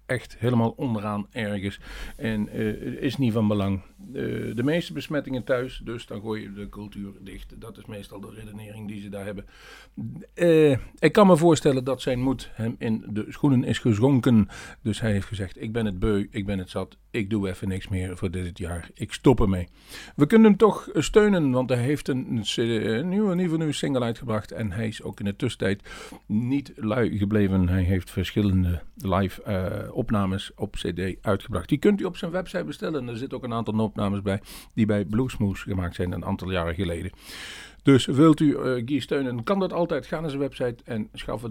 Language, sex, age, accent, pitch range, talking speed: Dutch, male, 50-69, Dutch, 100-130 Hz, 205 wpm